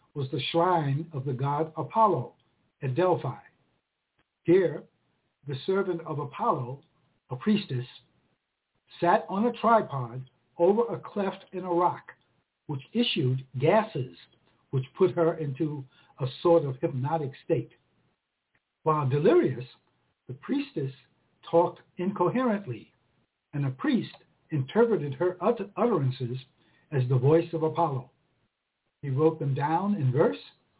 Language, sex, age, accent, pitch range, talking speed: English, male, 60-79, American, 135-180 Hz, 120 wpm